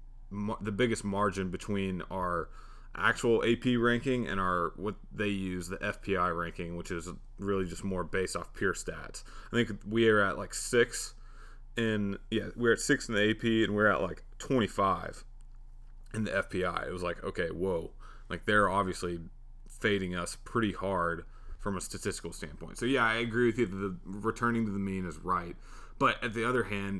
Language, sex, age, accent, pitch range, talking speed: English, male, 30-49, American, 90-115 Hz, 190 wpm